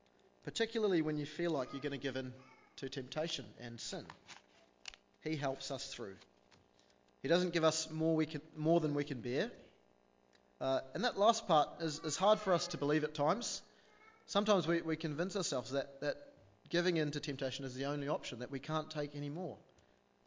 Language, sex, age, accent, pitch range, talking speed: English, male, 30-49, Australian, 100-155 Hz, 185 wpm